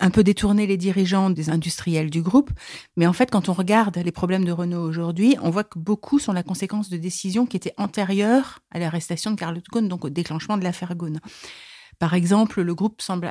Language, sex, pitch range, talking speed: French, female, 165-195 Hz, 215 wpm